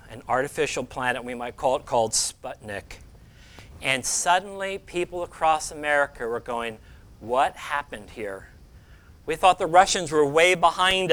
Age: 50-69